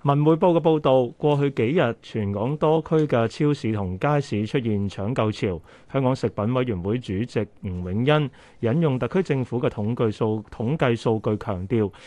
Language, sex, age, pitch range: Chinese, male, 30-49, 105-140 Hz